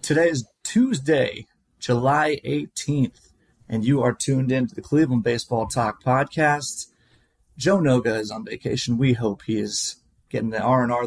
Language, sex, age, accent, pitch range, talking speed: English, male, 30-49, American, 115-145 Hz, 150 wpm